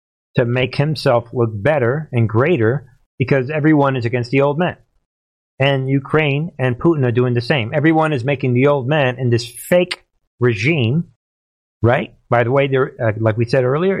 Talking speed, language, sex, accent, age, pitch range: 175 wpm, English, male, American, 50-69, 115-145 Hz